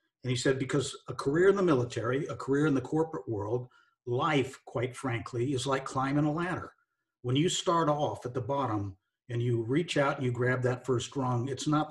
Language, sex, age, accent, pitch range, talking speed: English, male, 50-69, American, 120-145 Hz, 210 wpm